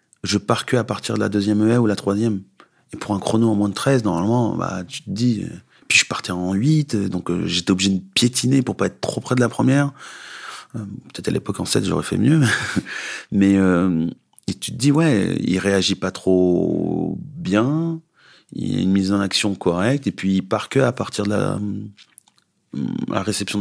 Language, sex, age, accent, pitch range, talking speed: French, male, 30-49, French, 95-115 Hz, 215 wpm